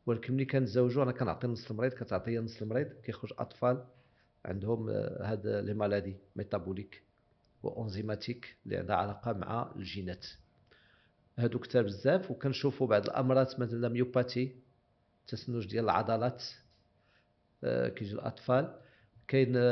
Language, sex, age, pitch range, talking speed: Arabic, male, 50-69, 105-125 Hz, 115 wpm